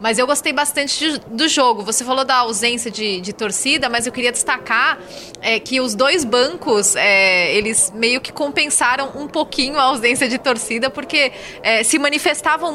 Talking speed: 180 wpm